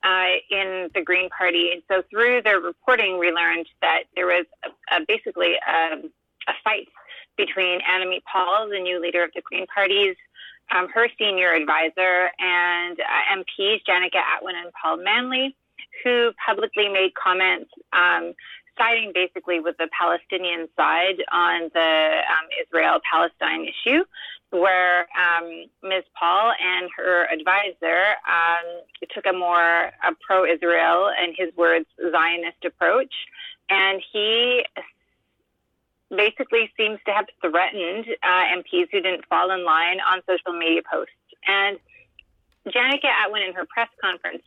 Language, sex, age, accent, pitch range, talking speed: English, female, 30-49, American, 175-225 Hz, 140 wpm